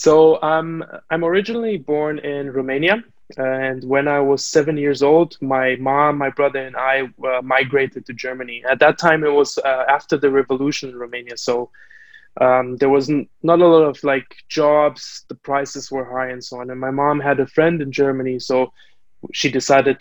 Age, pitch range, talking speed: 20-39, 130-150 Hz, 195 wpm